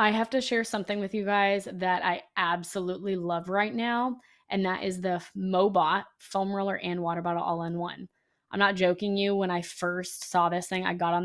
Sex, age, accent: female, 20-39, American